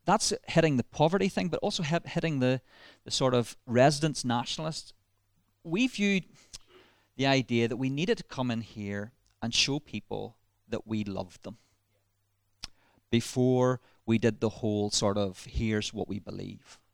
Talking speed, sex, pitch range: 150 wpm, male, 105-125 Hz